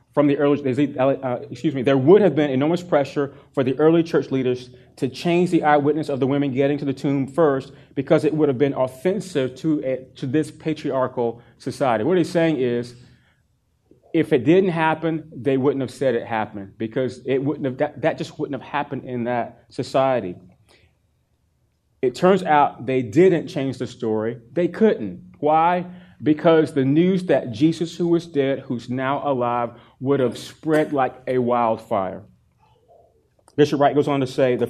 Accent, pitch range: American, 125-155 Hz